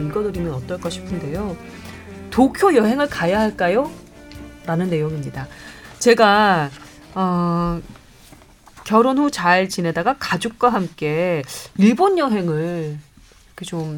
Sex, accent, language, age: female, native, Korean, 30-49